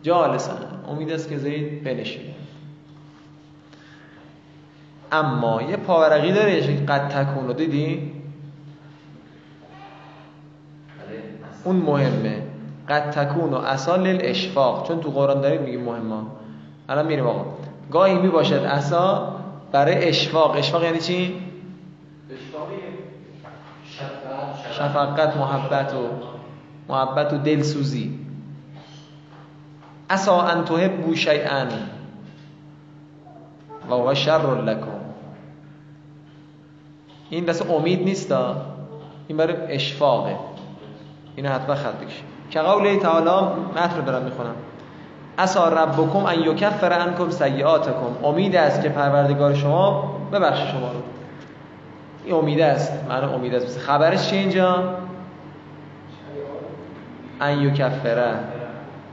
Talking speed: 95 wpm